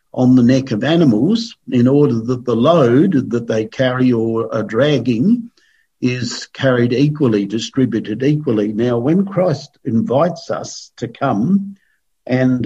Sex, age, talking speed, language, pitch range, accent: male, 50-69, 135 wpm, English, 120-145 Hz, Australian